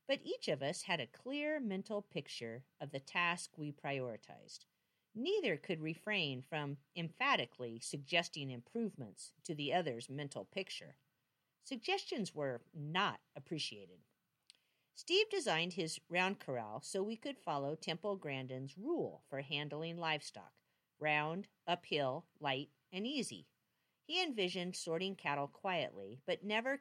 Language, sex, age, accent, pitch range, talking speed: English, female, 50-69, American, 145-225 Hz, 130 wpm